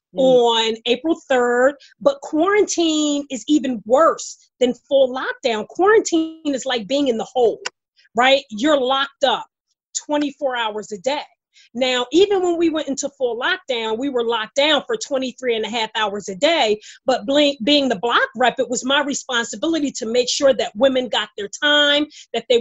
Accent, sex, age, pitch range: American, female, 30-49, 240-305 Hz